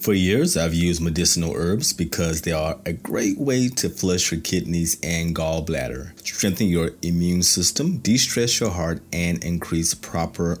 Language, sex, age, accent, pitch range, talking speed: English, male, 30-49, American, 85-120 Hz, 160 wpm